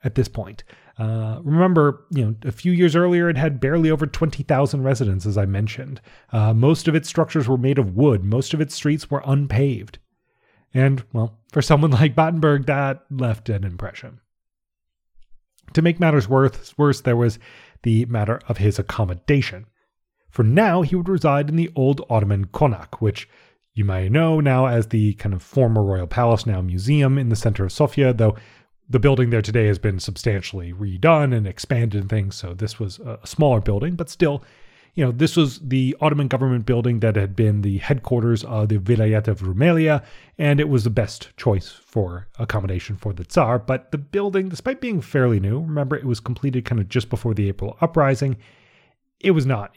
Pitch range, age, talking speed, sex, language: 105-145 Hz, 30-49, 190 wpm, male, English